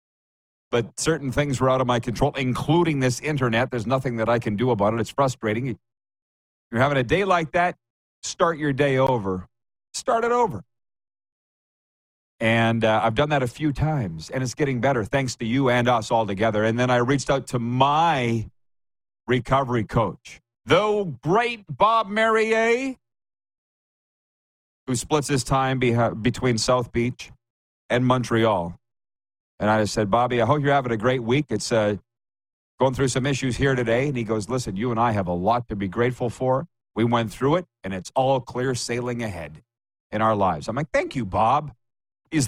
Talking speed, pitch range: 180 wpm, 105-135 Hz